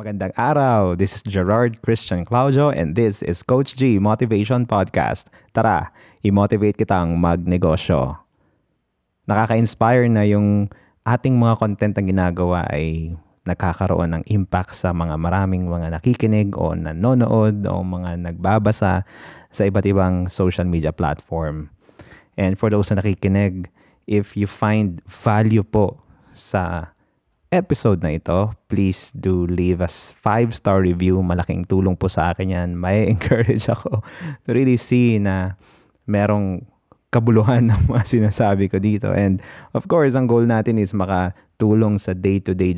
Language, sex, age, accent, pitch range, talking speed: Filipino, male, 20-39, native, 90-110 Hz, 135 wpm